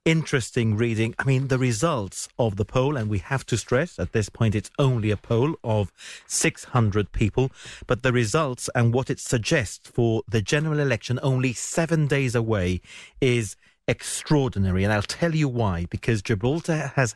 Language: English